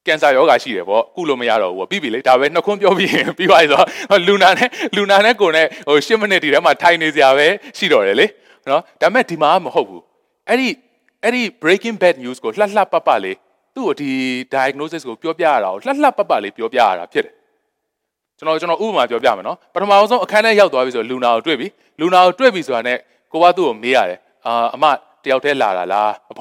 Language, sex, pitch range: English, male, 145-215 Hz